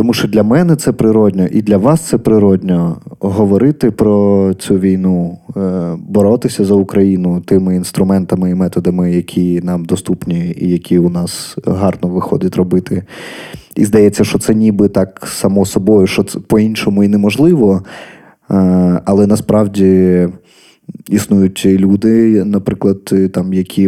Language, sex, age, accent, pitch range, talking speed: Ukrainian, male, 20-39, native, 95-105 Hz, 130 wpm